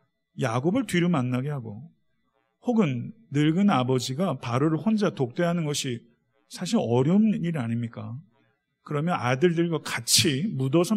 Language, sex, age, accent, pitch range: Korean, male, 40-59, native, 120-170 Hz